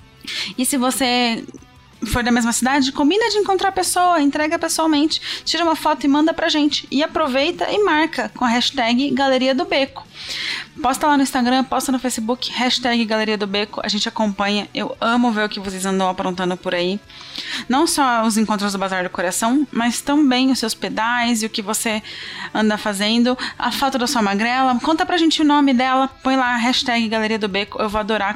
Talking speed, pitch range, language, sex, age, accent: 200 wpm, 200-260 Hz, Portuguese, female, 20-39, Brazilian